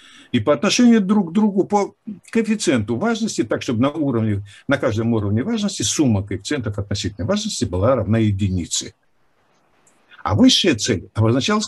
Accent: native